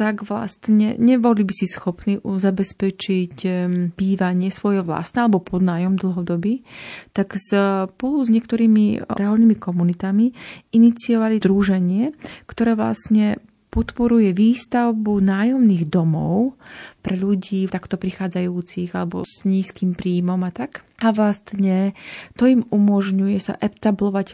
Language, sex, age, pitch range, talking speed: Slovak, female, 30-49, 190-215 Hz, 110 wpm